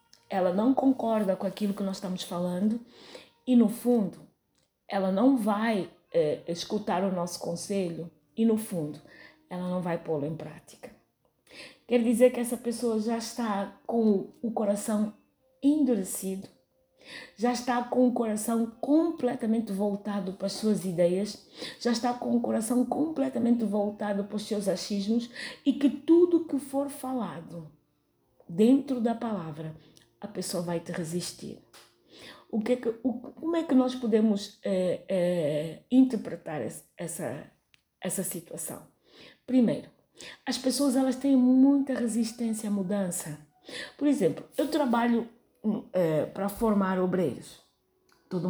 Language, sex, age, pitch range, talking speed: Portuguese, female, 20-39, 185-250 Hz, 140 wpm